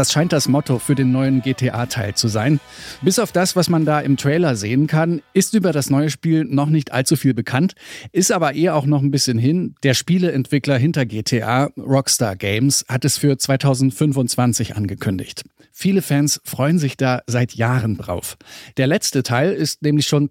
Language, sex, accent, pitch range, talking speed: German, male, German, 125-155 Hz, 185 wpm